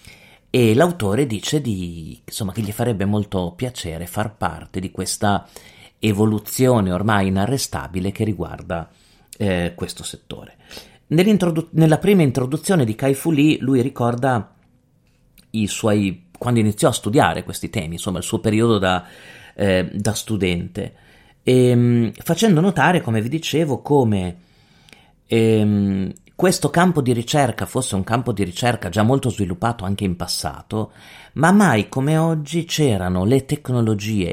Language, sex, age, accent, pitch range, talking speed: Italian, male, 40-59, native, 100-140 Hz, 135 wpm